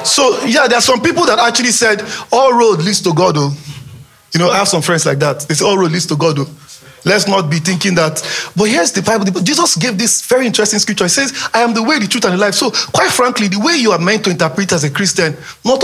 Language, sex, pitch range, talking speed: English, male, 170-235 Hz, 260 wpm